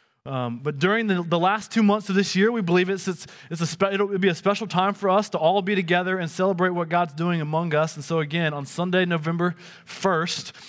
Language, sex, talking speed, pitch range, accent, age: English, male, 215 wpm, 165-200 Hz, American, 20-39